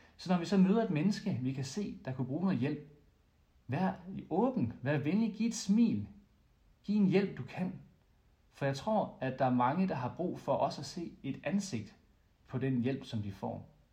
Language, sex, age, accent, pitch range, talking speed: English, male, 40-59, Danish, 115-160 Hz, 210 wpm